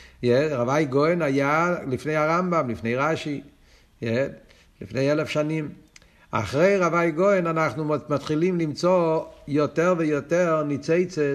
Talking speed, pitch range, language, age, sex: 105 wpm, 125-165 Hz, Hebrew, 60-79, male